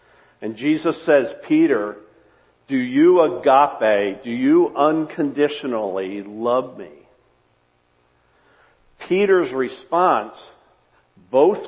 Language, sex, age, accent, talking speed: English, male, 50-69, American, 75 wpm